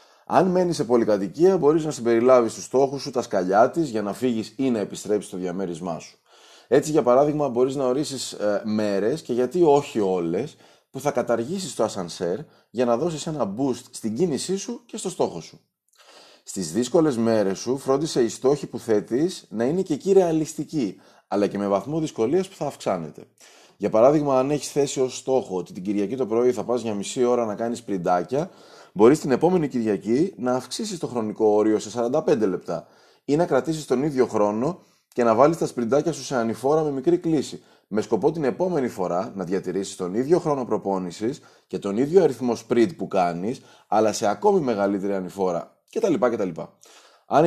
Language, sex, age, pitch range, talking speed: Greek, male, 30-49, 105-155 Hz, 185 wpm